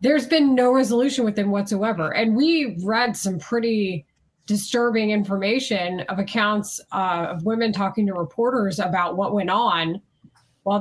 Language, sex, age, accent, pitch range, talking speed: English, female, 20-39, American, 190-250 Hz, 150 wpm